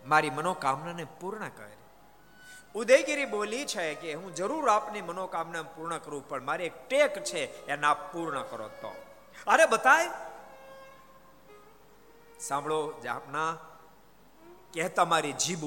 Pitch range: 135-210 Hz